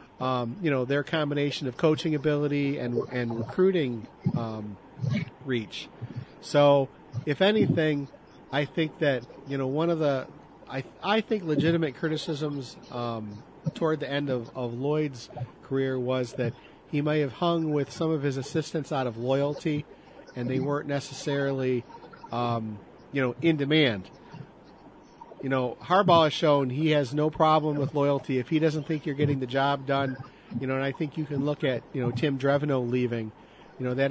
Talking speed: 170 wpm